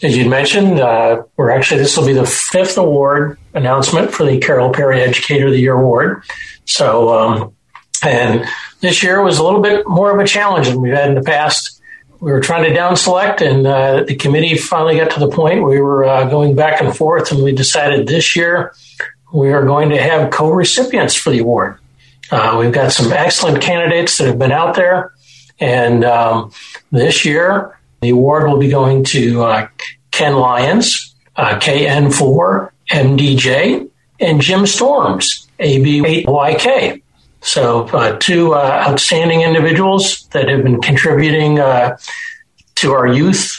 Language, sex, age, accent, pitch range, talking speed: English, male, 60-79, American, 130-170 Hz, 170 wpm